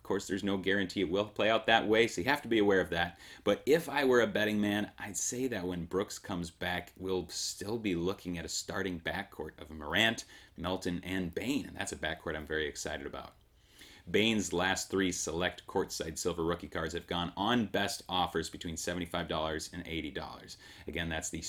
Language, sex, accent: English, male, American